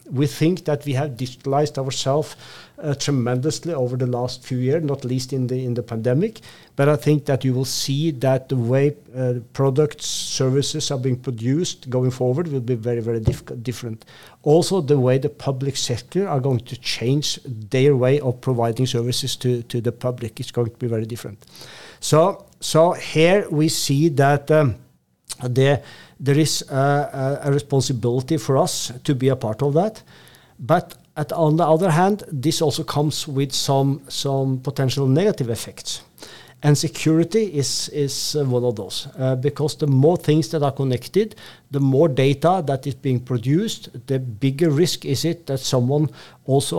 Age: 50-69